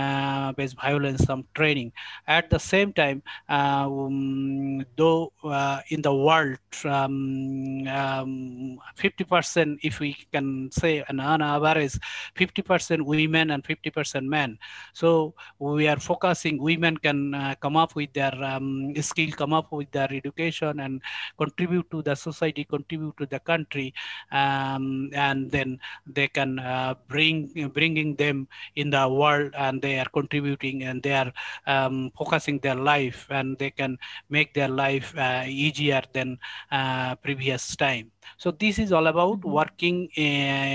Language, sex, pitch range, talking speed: English, male, 135-155 Hz, 150 wpm